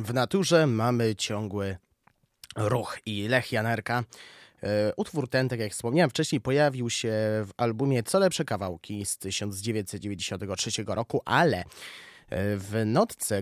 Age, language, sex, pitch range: 20-39, Polish, male, 105-145 Hz